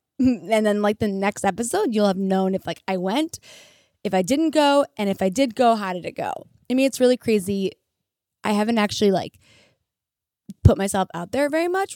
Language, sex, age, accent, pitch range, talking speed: English, female, 20-39, American, 190-245 Hz, 205 wpm